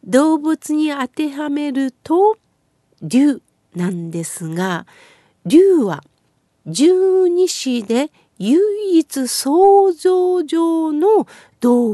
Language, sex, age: Japanese, female, 50-69